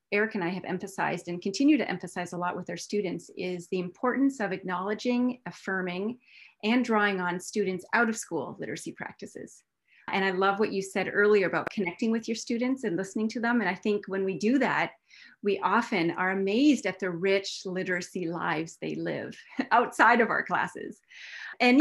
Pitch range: 185-245 Hz